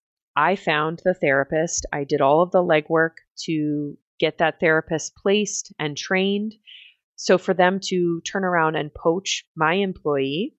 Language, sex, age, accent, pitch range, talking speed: English, female, 30-49, American, 145-175 Hz, 155 wpm